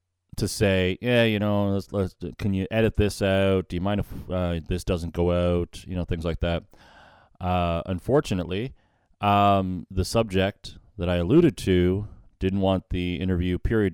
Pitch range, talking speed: 90-125 Hz, 165 wpm